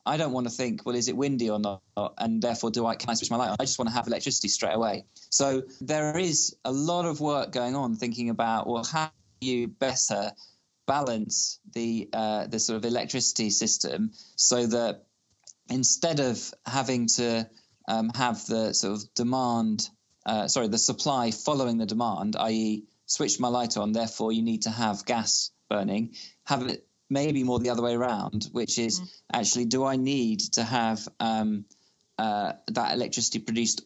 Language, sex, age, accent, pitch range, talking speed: English, male, 20-39, British, 110-135 Hz, 180 wpm